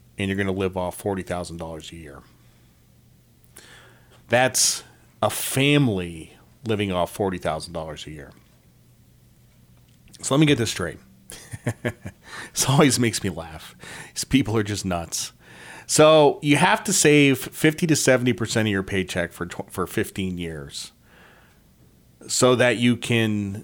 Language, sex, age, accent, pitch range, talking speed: English, male, 40-59, American, 90-130 Hz, 135 wpm